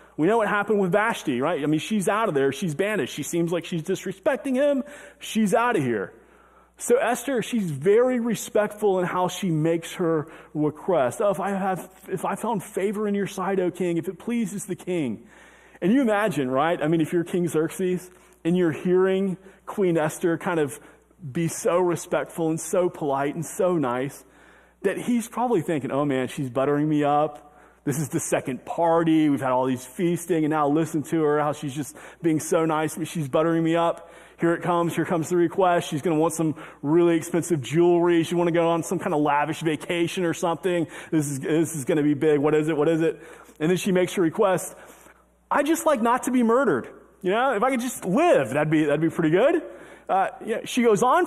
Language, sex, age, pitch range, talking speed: English, male, 30-49, 155-205 Hz, 220 wpm